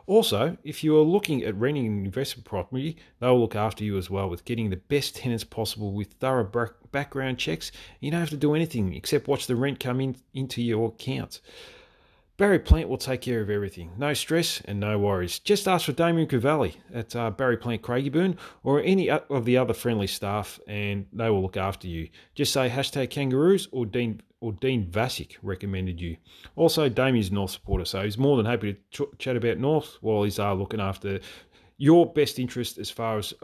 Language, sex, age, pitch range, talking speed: English, male, 30-49, 100-140 Hz, 200 wpm